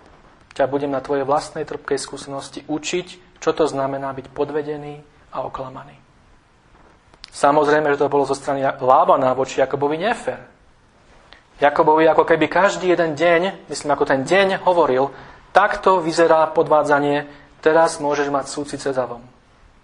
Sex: male